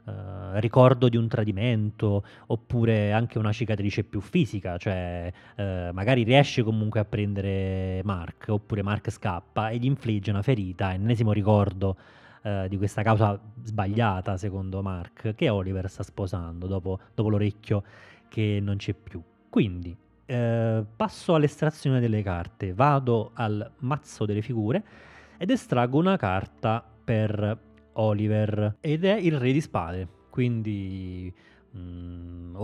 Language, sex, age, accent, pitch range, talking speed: Italian, male, 20-39, native, 100-115 Hz, 125 wpm